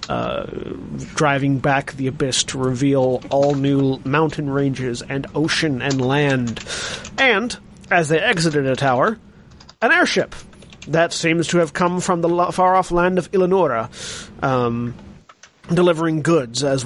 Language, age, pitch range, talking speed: English, 30-49, 130-165 Hz, 135 wpm